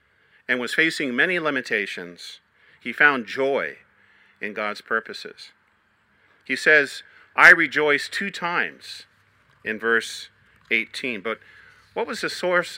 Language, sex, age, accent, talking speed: English, male, 50-69, American, 115 wpm